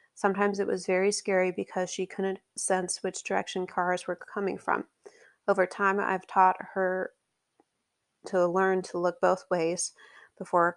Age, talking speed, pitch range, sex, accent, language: 30-49, 150 wpm, 175-195 Hz, female, American, English